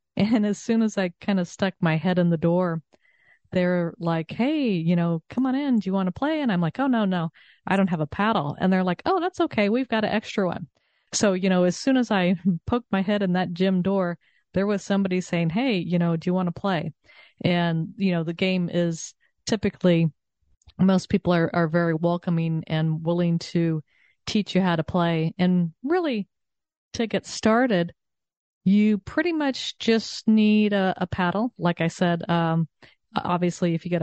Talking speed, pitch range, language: 205 wpm, 165-205 Hz, English